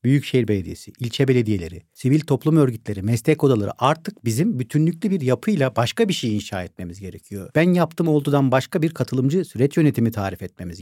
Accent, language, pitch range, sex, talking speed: native, Turkish, 120-170 Hz, male, 165 wpm